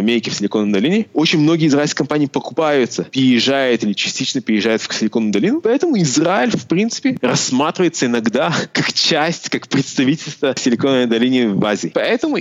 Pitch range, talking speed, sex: 135-180 Hz, 145 wpm, male